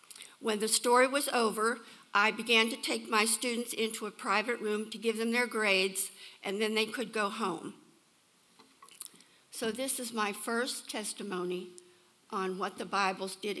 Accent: American